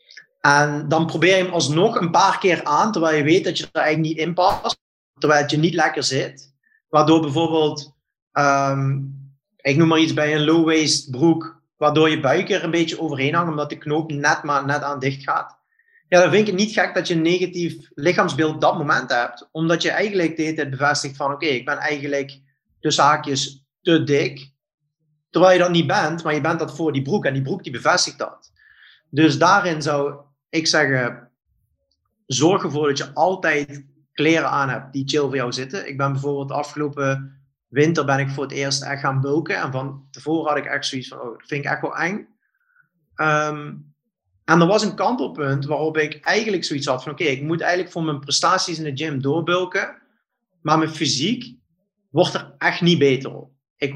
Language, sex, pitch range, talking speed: Dutch, male, 140-165 Hz, 200 wpm